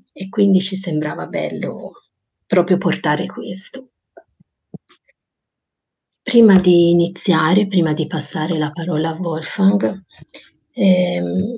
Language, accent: Italian, native